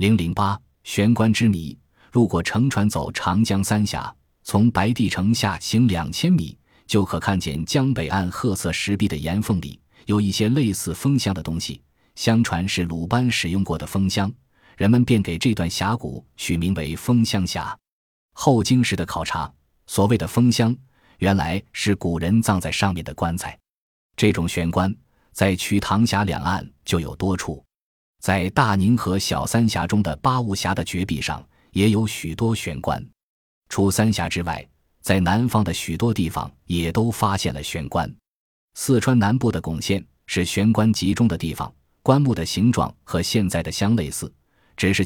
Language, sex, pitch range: Chinese, male, 85-110 Hz